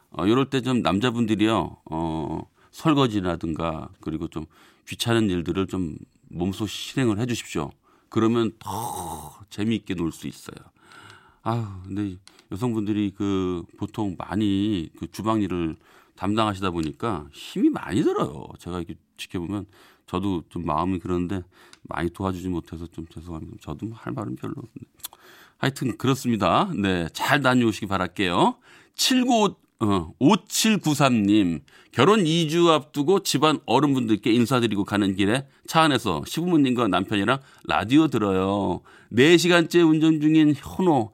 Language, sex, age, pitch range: Korean, male, 40-59, 90-135 Hz